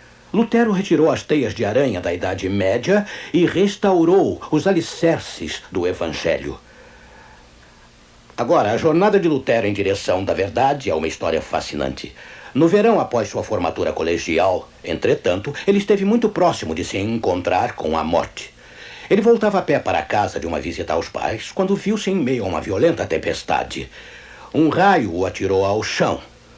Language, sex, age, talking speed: Portuguese, male, 60-79, 160 wpm